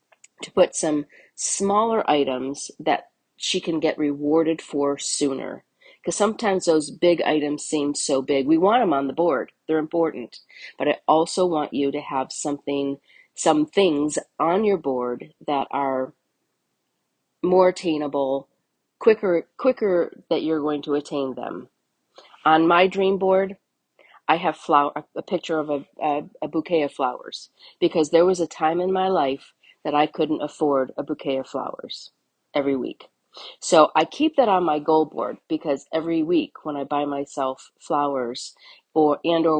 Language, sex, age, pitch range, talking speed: English, female, 40-59, 145-170 Hz, 160 wpm